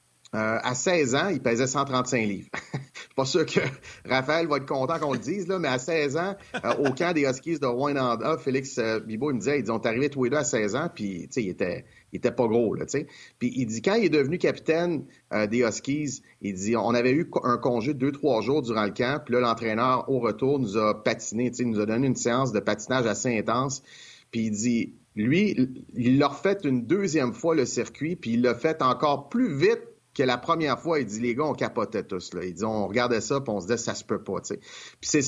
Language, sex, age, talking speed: French, male, 30-49, 250 wpm